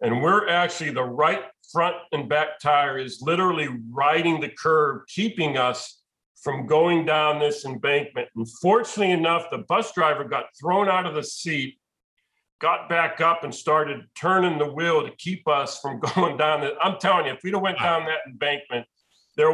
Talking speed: 180 wpm